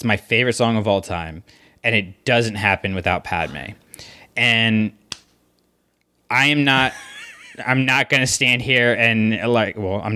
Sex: male